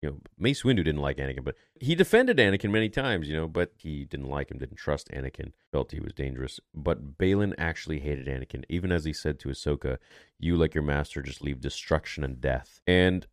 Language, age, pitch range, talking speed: English, 30-49, 70-105 Hz, 205 wpm